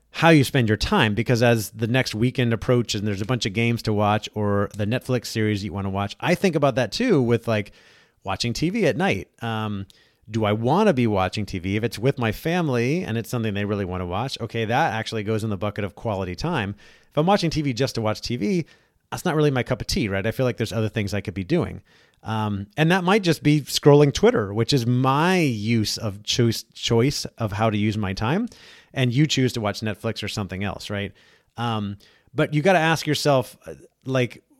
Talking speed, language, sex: 230 wpm, English, male